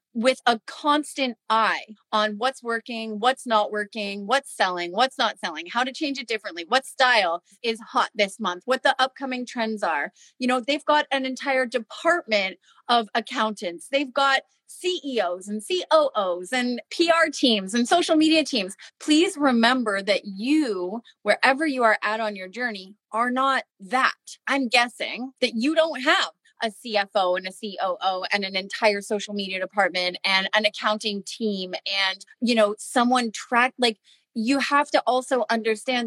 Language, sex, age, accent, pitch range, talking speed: English, female, 30-49, American, 210-260 Hz, 165 wpm